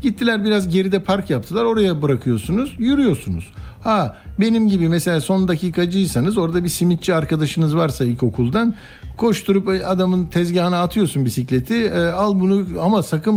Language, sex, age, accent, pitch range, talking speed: Turkish, male, 60-79, native, 140-175 Hz, 140 wpm